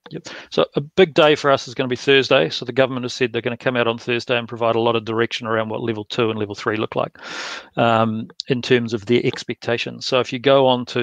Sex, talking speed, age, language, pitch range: male, 275 wpm, 40-59, English, 115-130 Hz